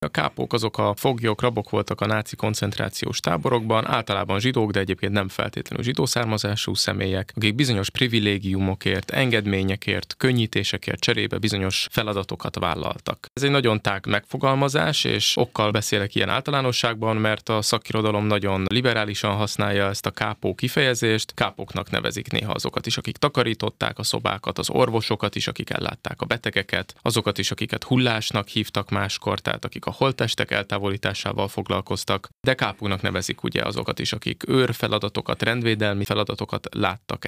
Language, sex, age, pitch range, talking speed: Hungarian, male, 20-39, 100-120 Hz, 140 wpm